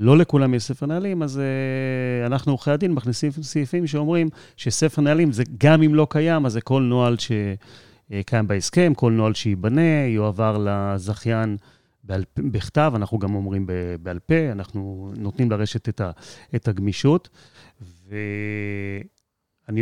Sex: male